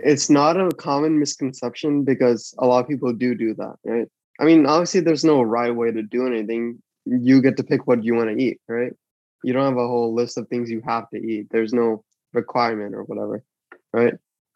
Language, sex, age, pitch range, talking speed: English, male, 20-39, 120-145 Hz, 215 wpm